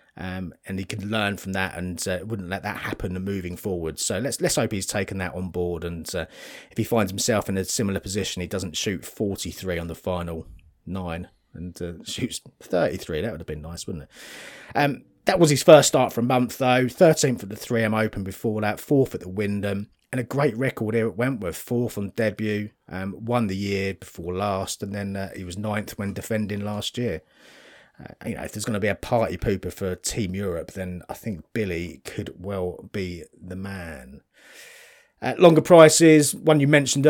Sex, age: male, 30-49